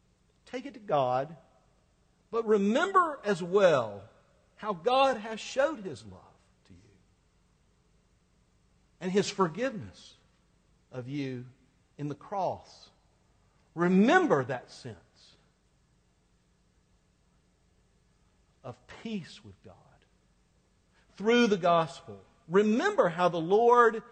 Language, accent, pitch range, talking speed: English, American, 130-215 Hz, 95 wpm